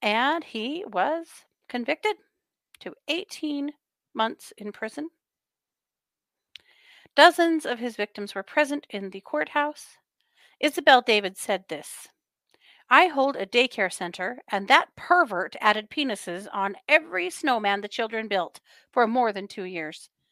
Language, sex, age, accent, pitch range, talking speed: English, female, 40-59, American, 205-305 Hz, 125 wpm